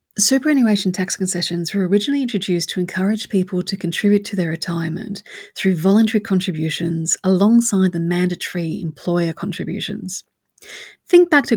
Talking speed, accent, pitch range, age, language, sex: 130 wpm, Australian, 180-225 Hz, 30-49, English, female